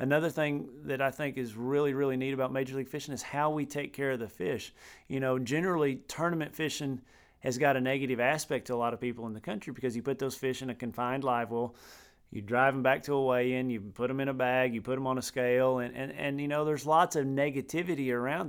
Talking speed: 255 wpm